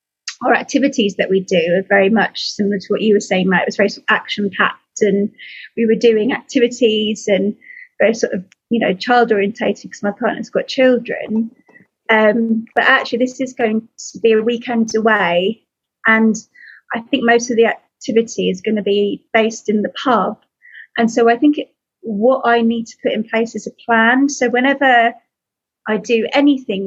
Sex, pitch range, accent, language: female, 210-250 Hz, British, English